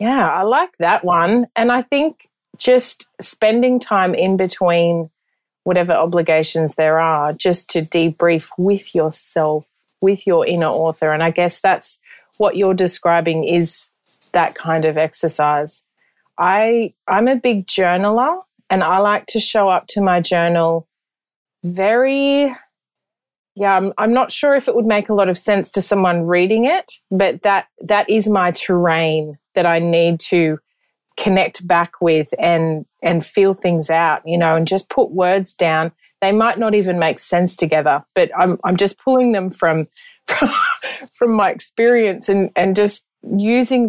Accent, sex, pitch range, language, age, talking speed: Australian, female, 165-210 Hz, English, 30-49, 160 wpm